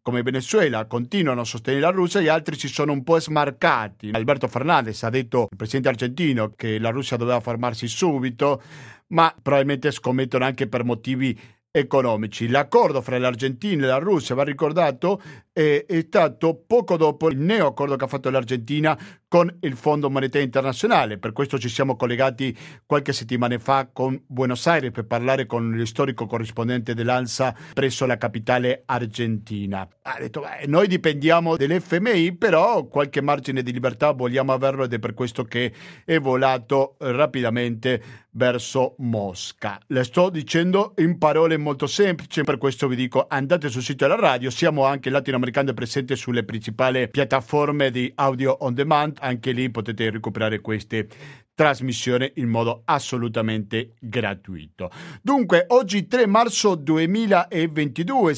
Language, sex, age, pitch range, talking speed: Italian, male, 50-69, 120-155 Hz, 150 wpm